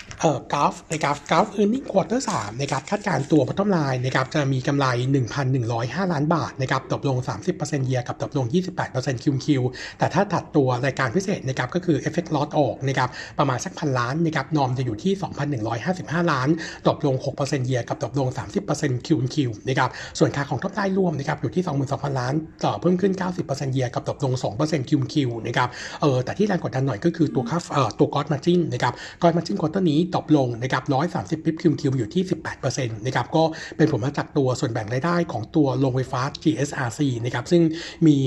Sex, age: male, 60-79